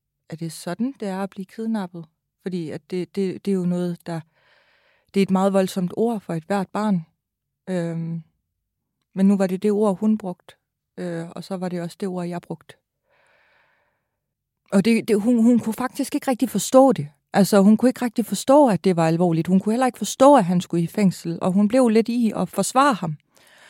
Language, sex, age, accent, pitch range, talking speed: Danish, female, 30-49, native, 170-215 Hz, 220 wpm